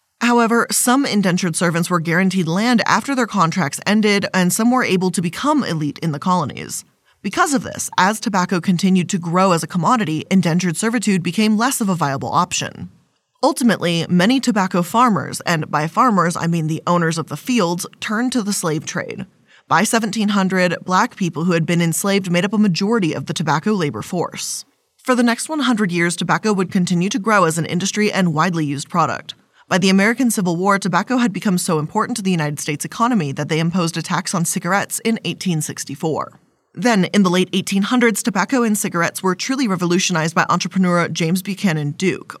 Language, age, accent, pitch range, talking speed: English, 20-39, American, 170-215 Hz, 190 wpm